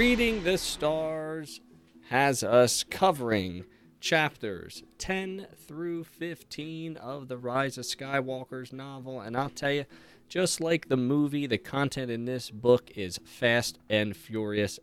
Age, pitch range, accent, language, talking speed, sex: 20-39, 100-140 Hz, American, English, 135 wpm, male